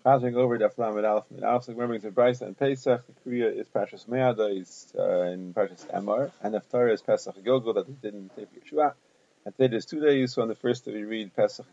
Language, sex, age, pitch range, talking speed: English, male, 30-49, 110-135 Hz, 250 wpm